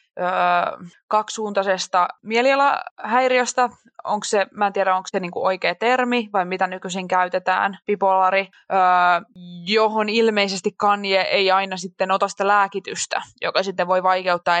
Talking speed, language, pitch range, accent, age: 125 wpm, Finnish, 185-220 Hz, native, 20-39